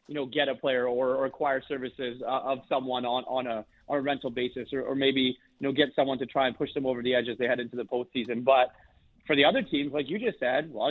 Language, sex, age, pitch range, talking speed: English, male, 30-49, 125-155 Hz, 280 wpm